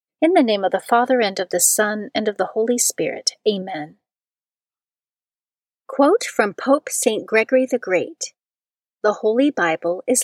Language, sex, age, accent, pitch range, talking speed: English, female, 40-59, American, 195-265 Hz, 160 wpm